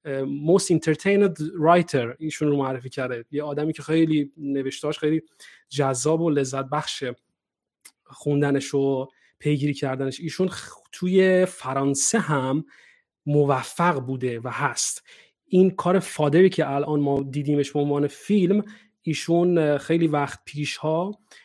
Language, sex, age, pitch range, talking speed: Persian, male, 30-49, 140-175 Hz, 125 wpm